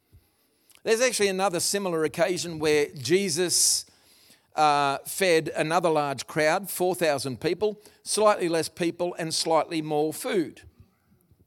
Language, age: English, 50-69